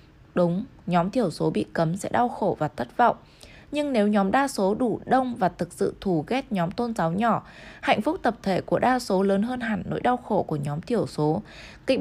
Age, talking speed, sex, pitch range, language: 20-39, 230 wpm, female, 175-245 Hz, Vietnamese